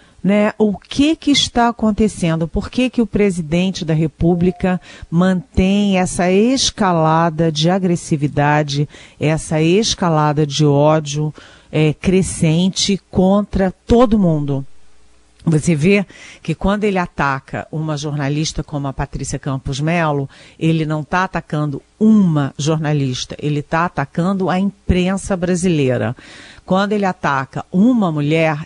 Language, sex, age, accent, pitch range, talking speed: Portuguese, female, 50-69, Brazilian, 155-190 Hz, 115 wpm